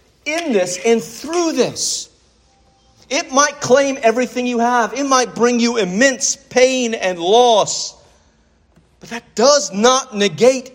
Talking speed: 135 wpm